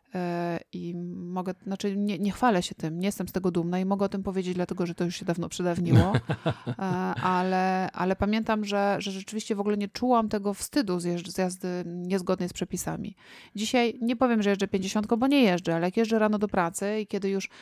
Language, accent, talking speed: Polish, native, 205 wpm